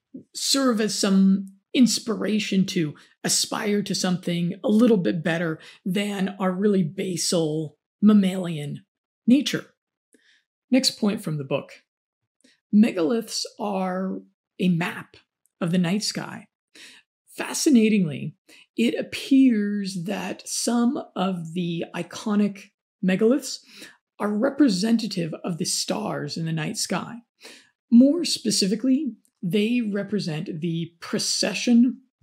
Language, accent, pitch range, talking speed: English, American, 180-230 Hz, 100 wpm